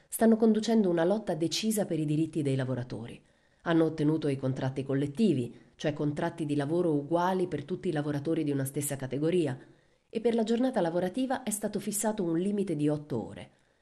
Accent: native